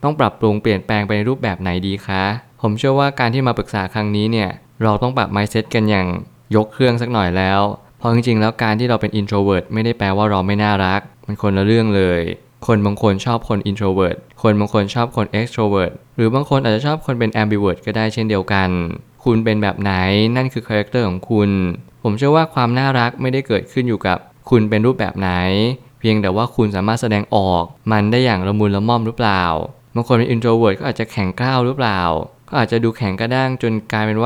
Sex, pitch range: male, 100-120 Hz